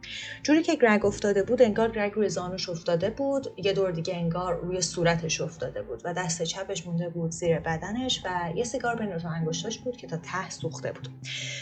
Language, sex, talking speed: Persian, female, 190 wpm